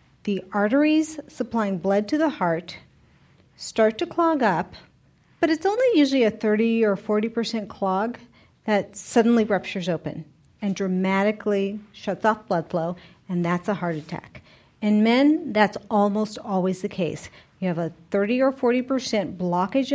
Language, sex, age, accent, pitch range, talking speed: English, female, 40-59, American, 185-245 Hz, 145 wpm